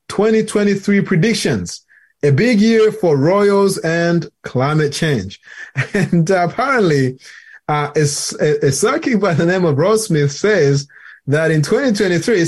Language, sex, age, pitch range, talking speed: English, male, 20-39, 140-175 Hz, 135 wpm